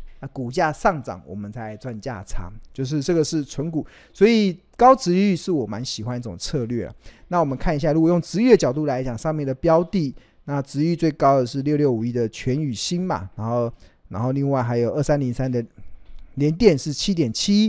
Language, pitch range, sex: Chinese, 120-165 Hz, male